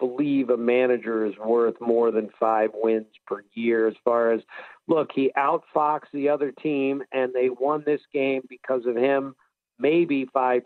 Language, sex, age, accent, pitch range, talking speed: English, male, 50-69, American, 115-140 Hz, 170 wpm